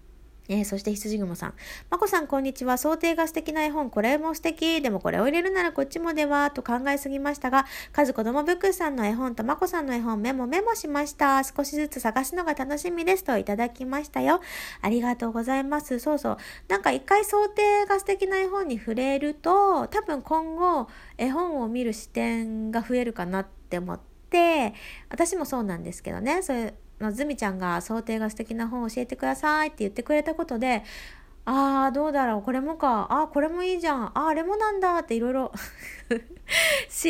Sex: female